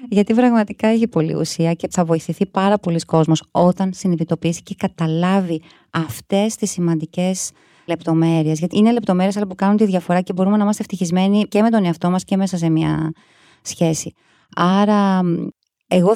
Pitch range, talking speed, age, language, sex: 165-205 Hz, 165 wpm, 30-49, Greek, female